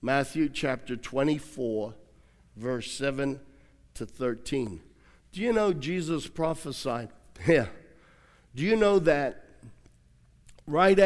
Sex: male